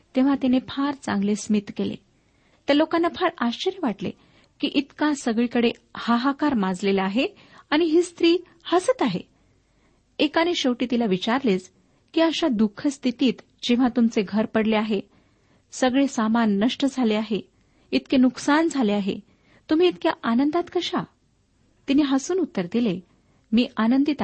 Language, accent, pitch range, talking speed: Marathi, native, 210-280 Hz, 130 wpm